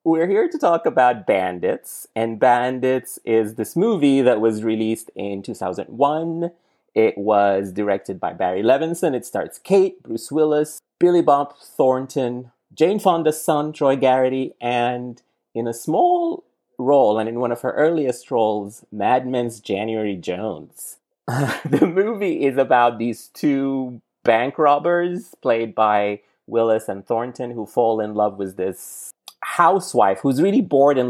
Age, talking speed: 30-49, 145 wpm